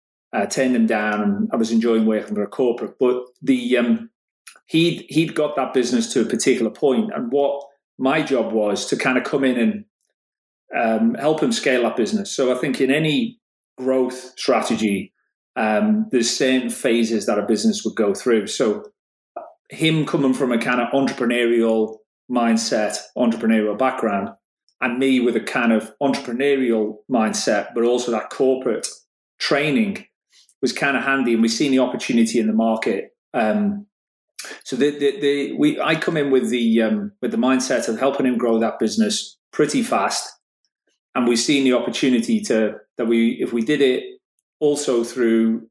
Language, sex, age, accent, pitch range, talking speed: English, male, 30-49, British, 115-150 Hz, 175 wpm